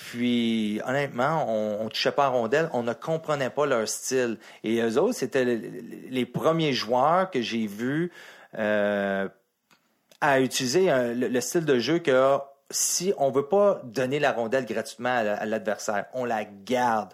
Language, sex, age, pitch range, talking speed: French, male, 40-59, 120-155 Hz, 180 wpm